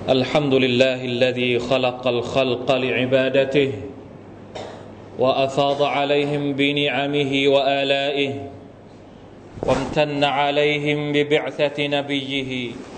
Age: 30-49